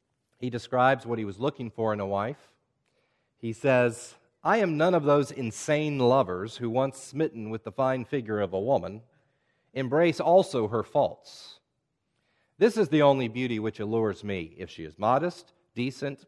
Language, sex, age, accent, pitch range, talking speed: English, male, 40-59, American, 95-130 Hz, 170 wpm